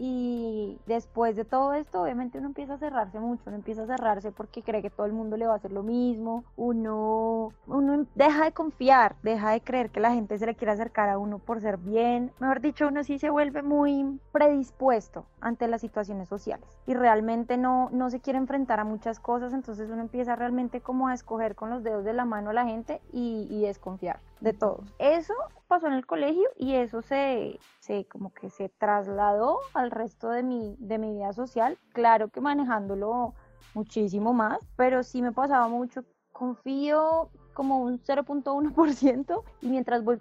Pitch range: 220-260 Hz